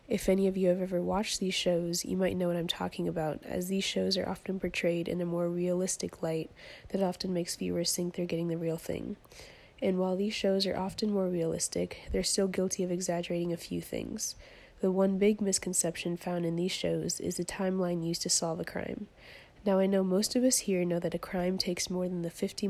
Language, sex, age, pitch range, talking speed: English, female, 20-39, 175-195 Hz, 225 wpm